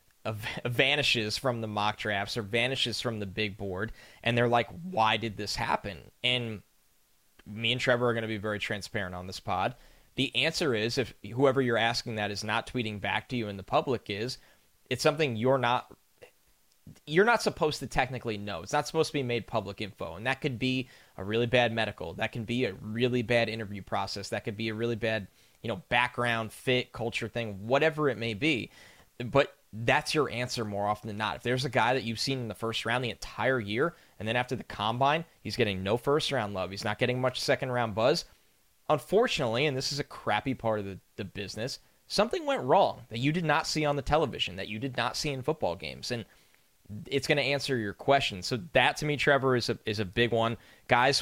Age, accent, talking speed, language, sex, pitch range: 10-29, American, 220 wpm, English, male, 105-130 Hz